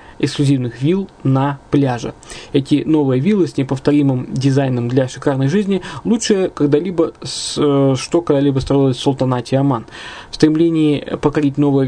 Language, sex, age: Russian, male, 20-39